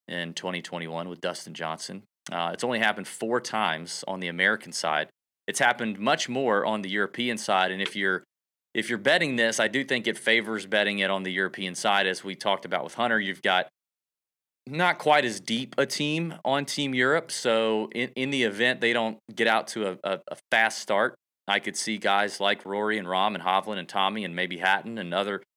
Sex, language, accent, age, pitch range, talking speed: male, English, American, 30-49, 95-115 Hz, 210 wpm